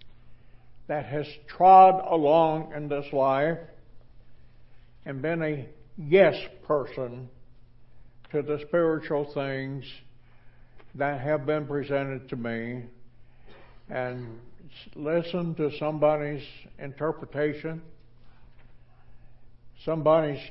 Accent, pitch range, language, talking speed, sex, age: American, 120-155 Hz, English, 80 wpm, male, 60-79